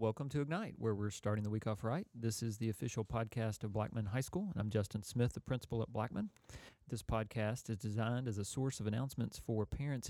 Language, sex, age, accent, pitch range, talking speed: English, male, 40-59, American, 105-125 Hz, 225 wpm